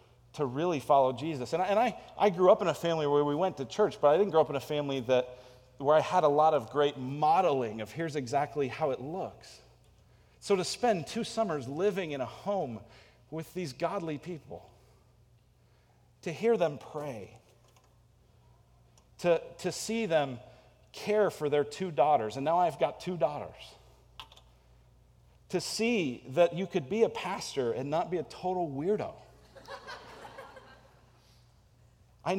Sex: male